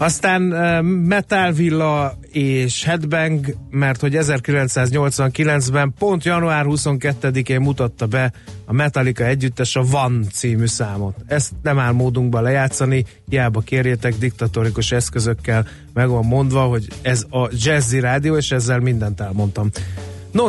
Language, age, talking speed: Hungarian, 30-49, 125 wpm